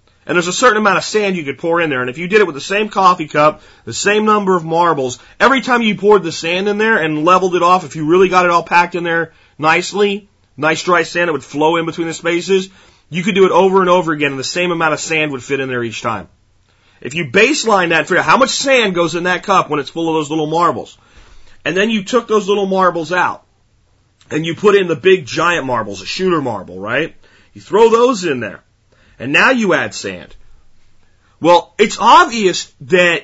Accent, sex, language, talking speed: American, male, English, 240 wpm